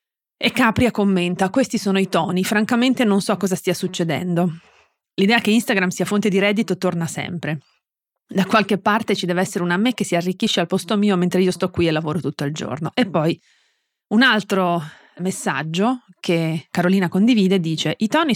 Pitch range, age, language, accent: 175-225 Hz, 30-49, Italian, native